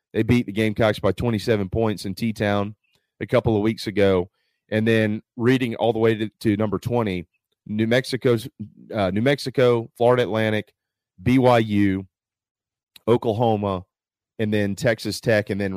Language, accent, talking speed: English, American, 150 wpm